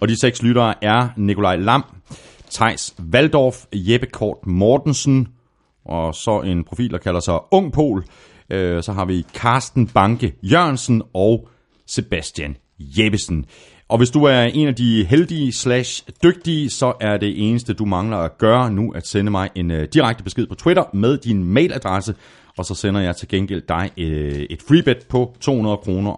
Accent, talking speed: native, 165 wpm